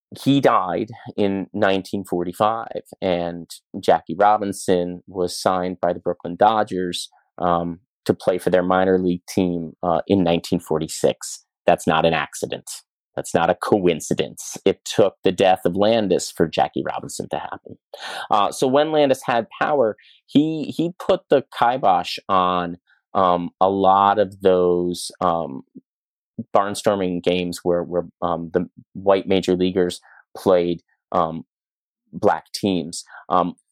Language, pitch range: English, 90-115 Hz